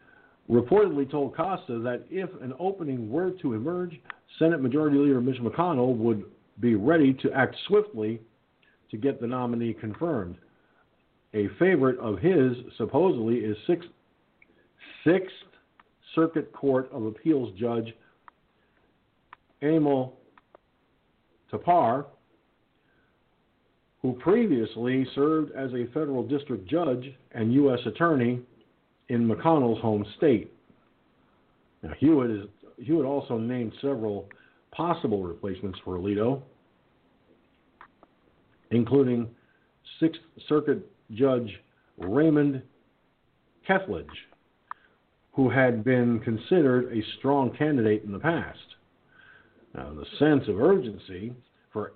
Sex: male